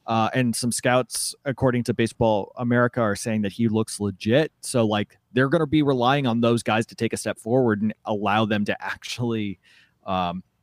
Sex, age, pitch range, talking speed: male, 30-49, 100-125 Hz, 200 wpm